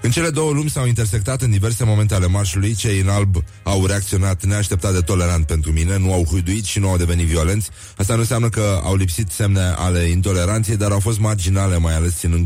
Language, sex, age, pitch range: Romanian, male, 30-49, 90-110 Hz